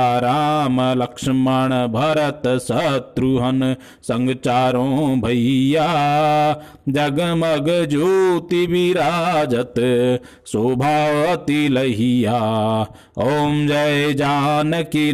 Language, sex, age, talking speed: Hindi, male, 50-69, 60 wpm